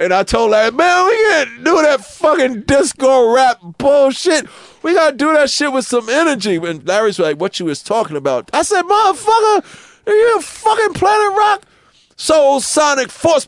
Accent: American